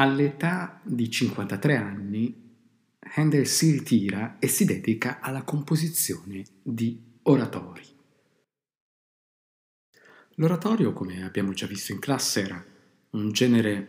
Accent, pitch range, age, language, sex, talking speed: native, 105-170 Hz, 50-69, Italian, male, 105 wpm